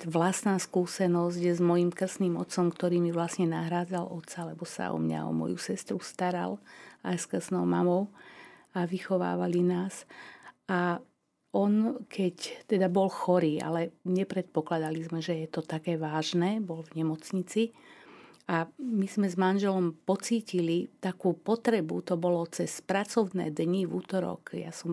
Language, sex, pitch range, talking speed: Slovak, female, 170-195 Hz, 145 wpm